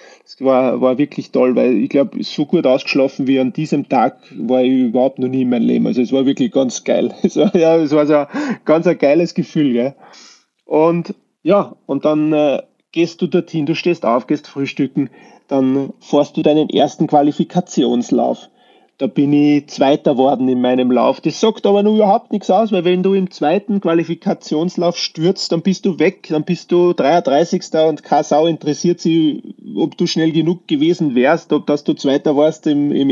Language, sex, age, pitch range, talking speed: German, male, 30-49, 145-185 Hz, 190 wpm